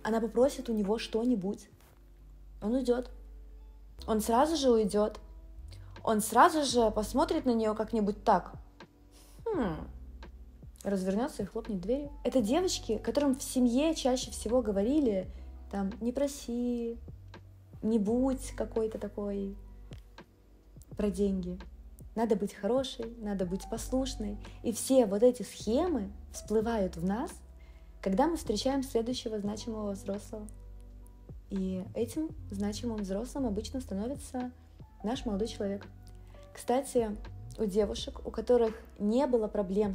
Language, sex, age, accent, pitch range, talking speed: Russian, female, 20-39, native, 195-245 Hz, 115 wpm